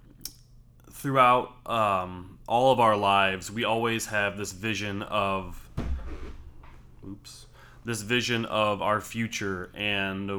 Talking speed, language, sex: 110 wpm, English, male